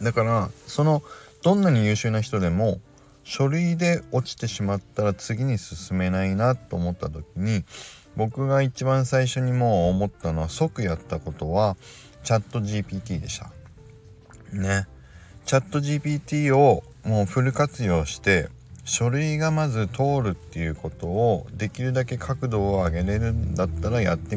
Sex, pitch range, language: male, 90-130 Hz, Japanese